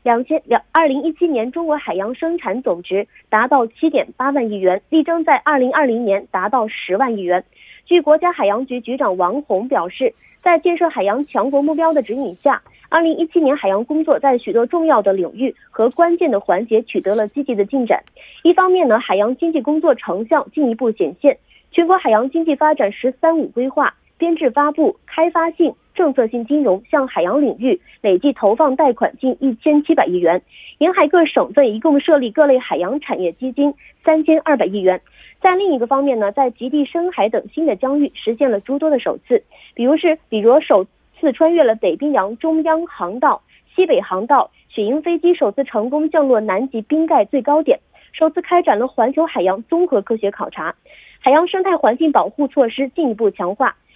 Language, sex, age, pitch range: Korean, female, 30-49, 235-320 Hz